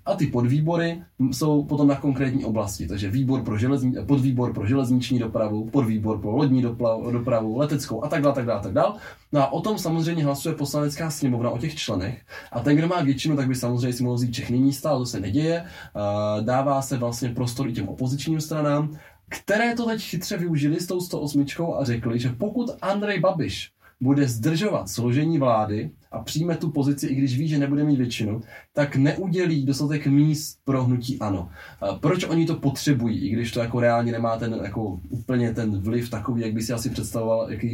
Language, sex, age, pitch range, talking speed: Czech, male, 20-39, 115-145 Hz, 190 wpm